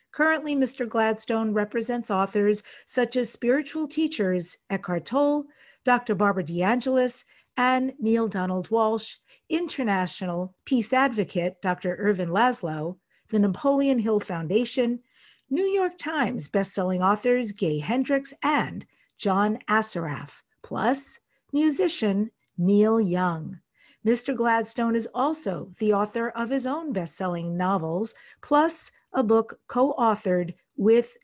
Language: English